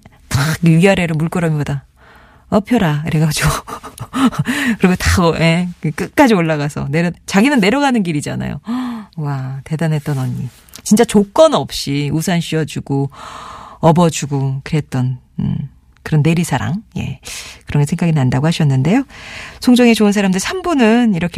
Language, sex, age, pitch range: Korean, female, 40-59, 150-215 Hz